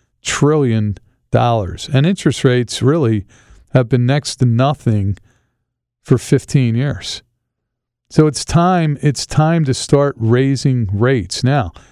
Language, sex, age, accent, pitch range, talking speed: English, male, 50-69, American, 120-150 Hz, 120 wpm